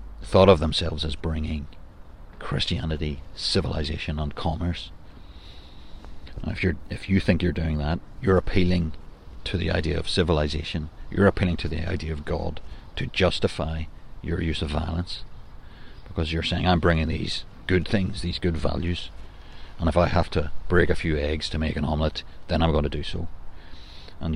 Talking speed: 170 wpm